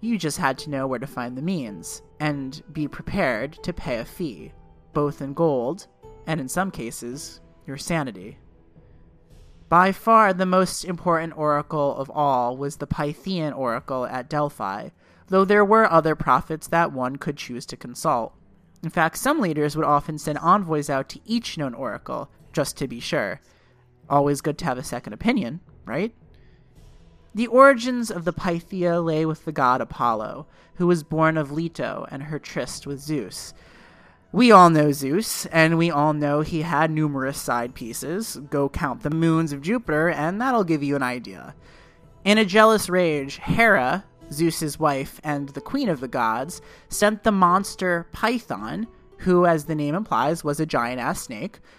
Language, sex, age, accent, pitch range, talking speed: English, male, 30-49, American, 140-175 Hz, 170 wpm